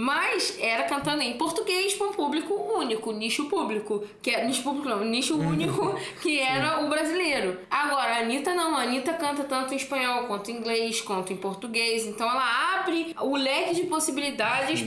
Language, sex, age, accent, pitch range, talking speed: Portuguese, female, 10-29, Brazilian, 230-295 Hz, 180 wpm